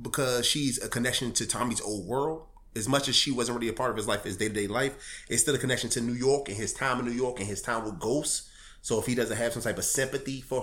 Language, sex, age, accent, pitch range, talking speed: English, male, 30-49, American, 110-135 Hz, 295 wpm